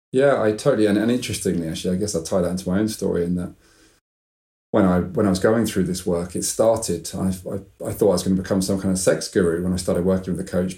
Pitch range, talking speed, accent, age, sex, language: 90-100 Hz, 280 wpm, British, 30-49, male, English